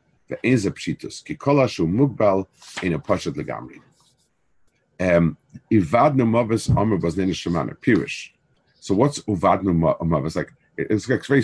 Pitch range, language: 95-130 Hz, English